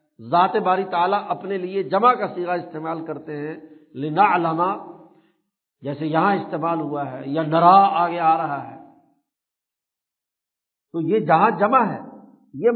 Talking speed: 135 wpm